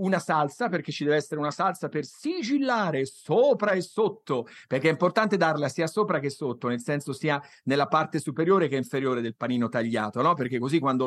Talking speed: 195 wpm